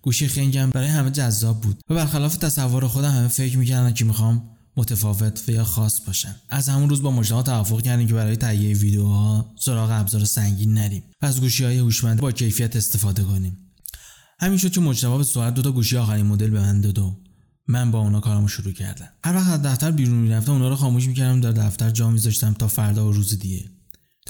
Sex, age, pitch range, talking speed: male, 20-39, 105-130 Hz, 195 wpm